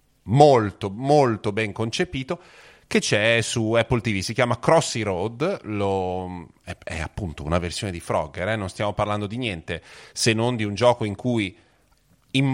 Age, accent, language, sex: 30-49, native, Italian, male